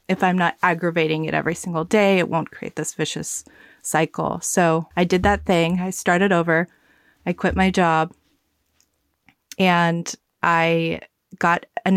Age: 20-39